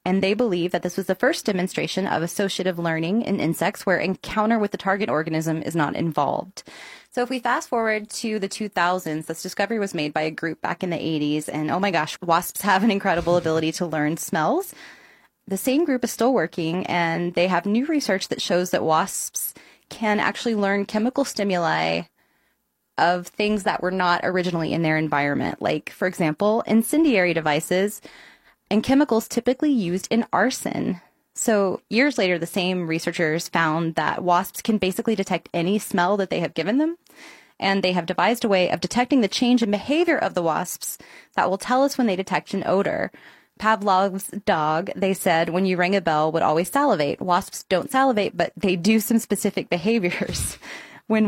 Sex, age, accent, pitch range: female, 20-39, American, 170-220 Hz